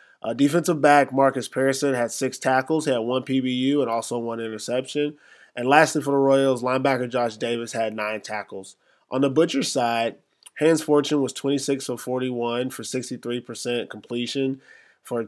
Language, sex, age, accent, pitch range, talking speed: English, male, 20-39, American, 115-135 Hz, 165 wpm